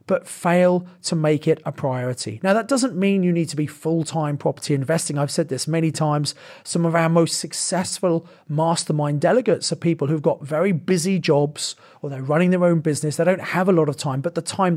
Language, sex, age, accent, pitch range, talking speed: English, male, 30-49, British, 150-180 Hz, 215 wpm